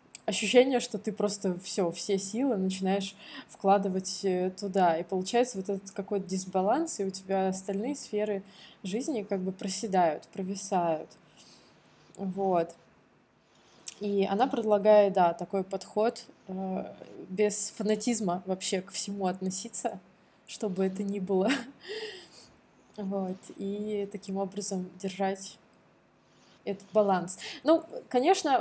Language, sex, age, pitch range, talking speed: Russian, female, 20-39, 190-235 Hz, 110 wpm